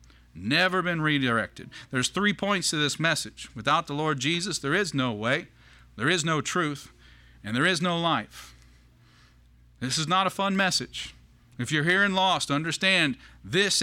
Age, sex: 40-59, male